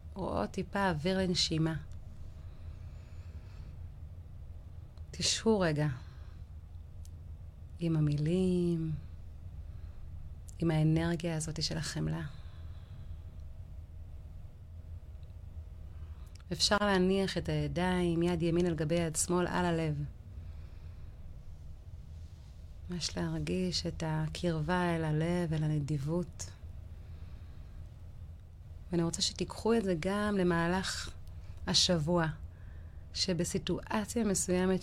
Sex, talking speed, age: female, 75 wpm, 30-49